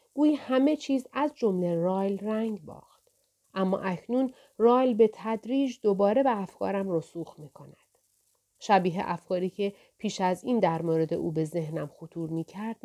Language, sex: Persian, female